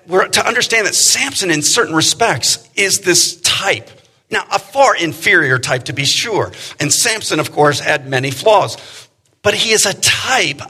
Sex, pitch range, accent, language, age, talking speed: male, 120-170 Hz, American, English, 50-69, 170 wpm